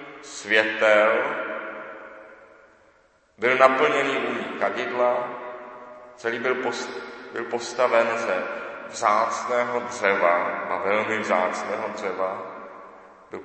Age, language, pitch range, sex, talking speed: 40-59, Czech, 125-155 Hz, male, 80 wpm